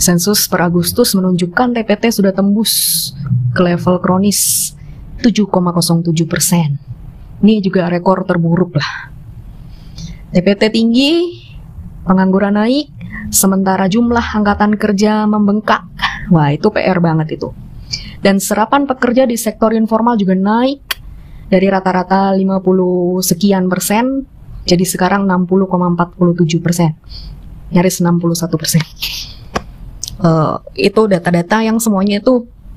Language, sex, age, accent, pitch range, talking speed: Indonesian, female, 20-39, native, 170-215 Hz, 105 wpm